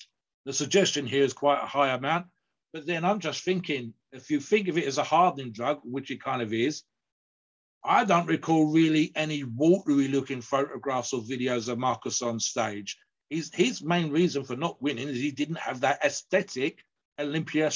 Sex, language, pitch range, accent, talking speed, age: male, English, 130-165 Hz, British, 185 wpm, 50-69